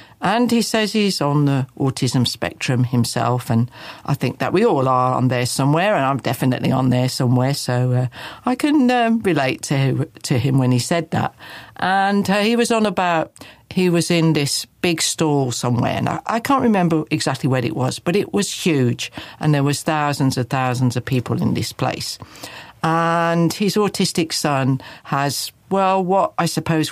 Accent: British